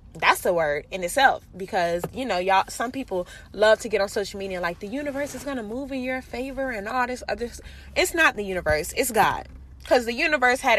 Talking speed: 230 wpm